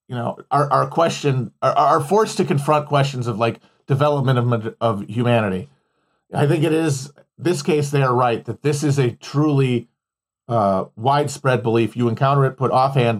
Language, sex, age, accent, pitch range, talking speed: English, male, 40-59, American, 115-150 Hz, 175 wpm